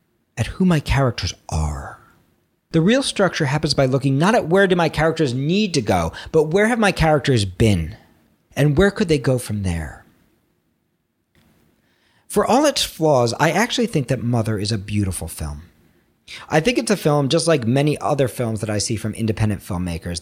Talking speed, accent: 185 wpm, American